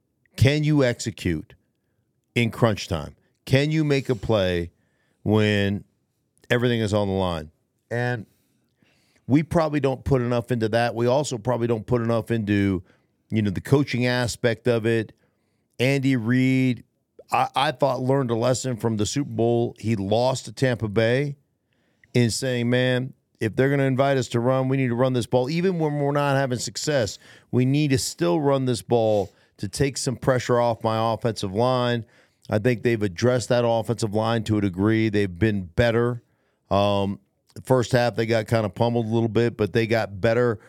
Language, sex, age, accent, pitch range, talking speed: English, male, 50-69, American, 110-130 Hz, 180 wpm